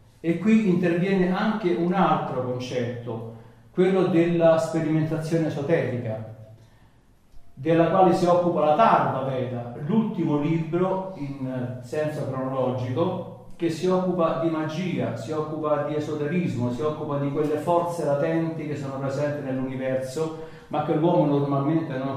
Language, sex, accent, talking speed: Italian, male, native, 125 wpm